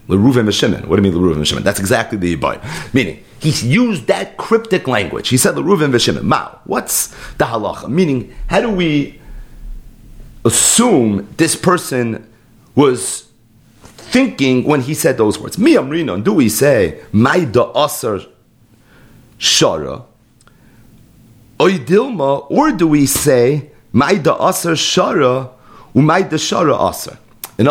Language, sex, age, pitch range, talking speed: English, male, 40-59, 120-180 Hz, 115 wpm